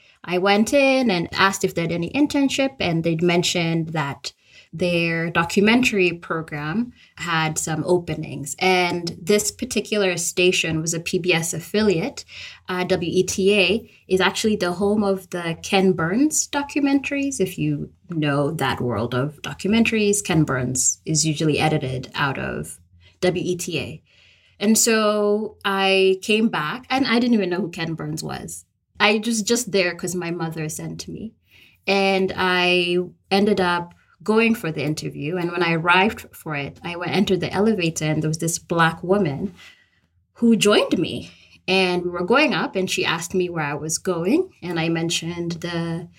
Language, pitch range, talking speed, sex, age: English, 160-200 Hz, 160 wpm, female, 20-39